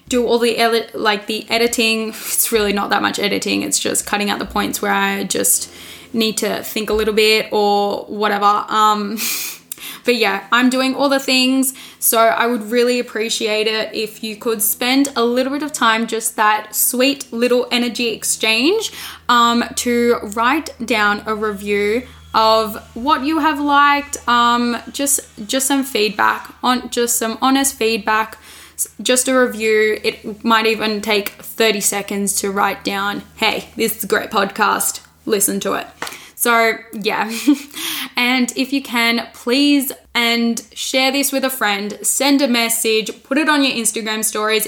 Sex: female